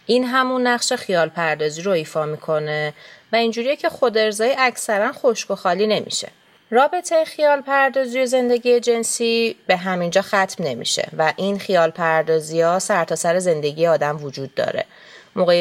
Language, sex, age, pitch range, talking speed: Persian, female, 30-49, 165-250 Hz, 155 wpm